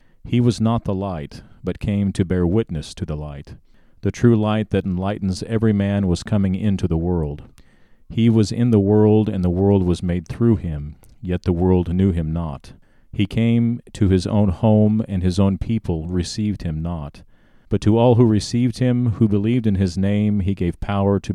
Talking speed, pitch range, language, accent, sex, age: 200 wpm, 90-105 Hz, English, American, male, 40-59